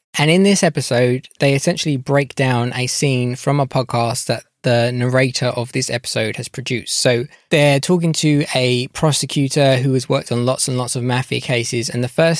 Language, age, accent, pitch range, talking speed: English, 10-29, British, 120-135 Hz, 195 wpm